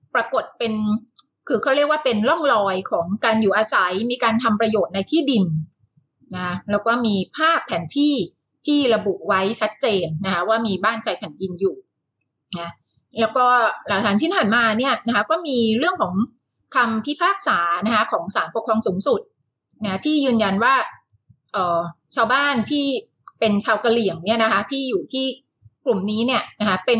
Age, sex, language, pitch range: 30-49, female, Thai, 200-270 Hz